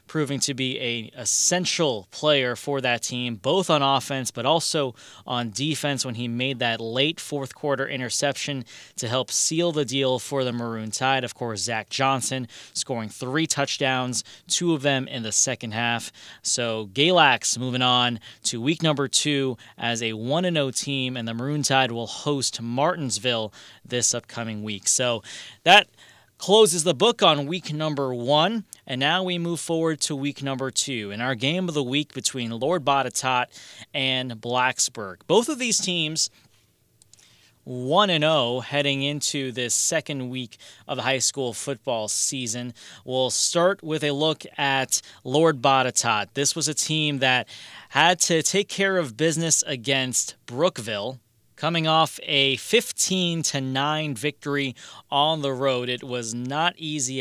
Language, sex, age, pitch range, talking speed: English, male, 20-39, 120-150 Hz, 155 wpm